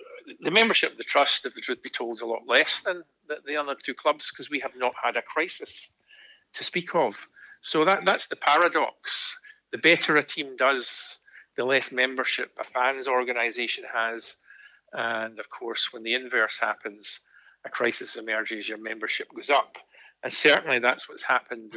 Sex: male